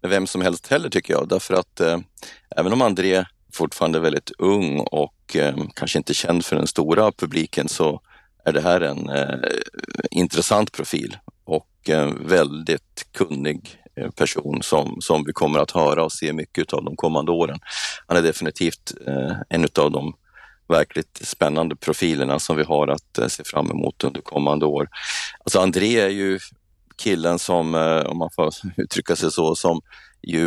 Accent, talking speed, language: native, 160 wpm, Swedish